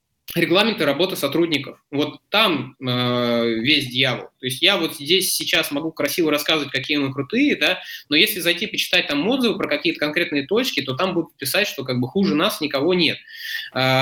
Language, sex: Russian, male